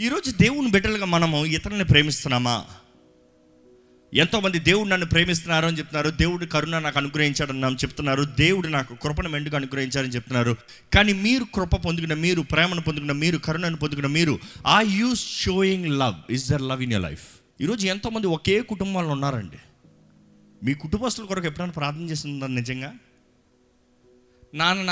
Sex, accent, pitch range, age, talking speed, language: male, native, 135-200 Hz, 30-49, 140 wpm, Telugu